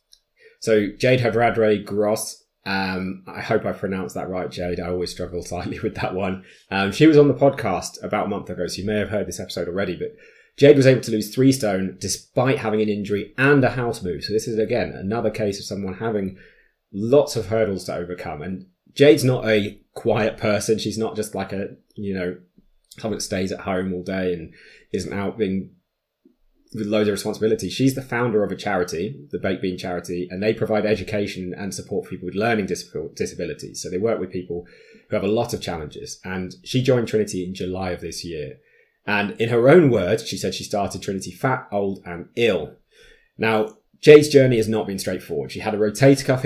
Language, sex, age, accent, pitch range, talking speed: English, male, 20-39, British, 95-115 Hz, 210 wpm